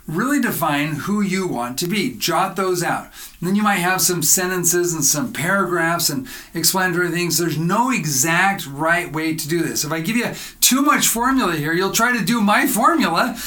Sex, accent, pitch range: male, American, 155-205 Hz